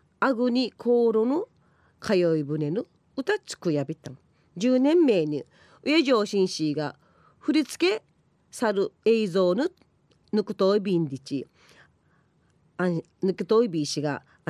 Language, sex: Japanese, female